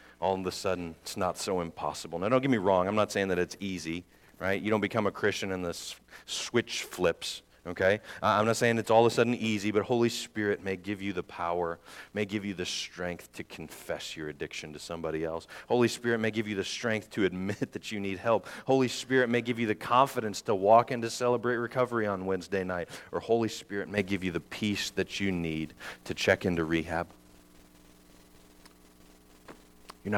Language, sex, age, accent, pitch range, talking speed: English, male, 40-59, American, 75-105 Hz, 210 wpm